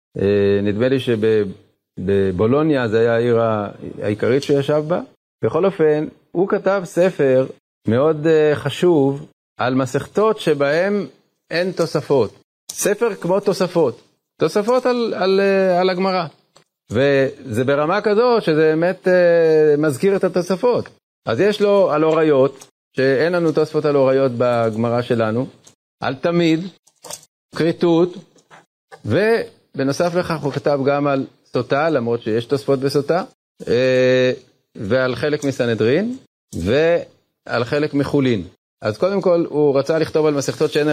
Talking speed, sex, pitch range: 125 wpm, male, 130-175 Hz